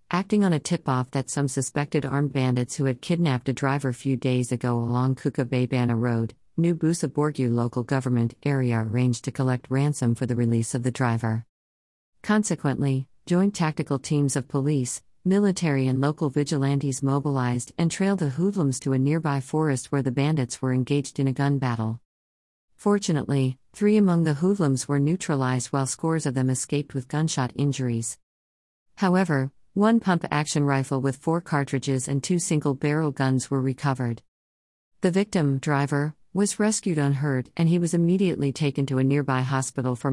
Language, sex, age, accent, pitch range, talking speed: English, female, 50-69, American, 130-160 Hz, 165 wpm